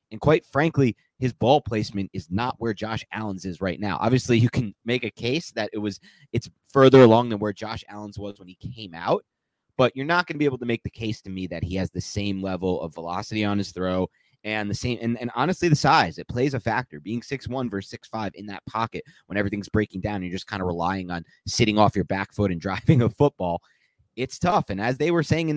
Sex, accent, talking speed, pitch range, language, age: male, American, 250 wpm, 95-125 Hz, English, 30-49